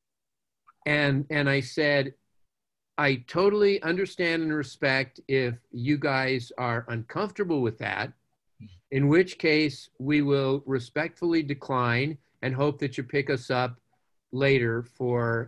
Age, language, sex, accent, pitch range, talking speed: 50-69, English, male, American, 120-145 Hz, 125 wpm